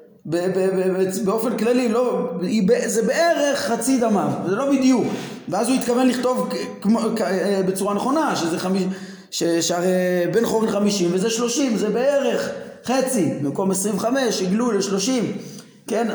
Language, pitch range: Hebrew, 180-235 Hz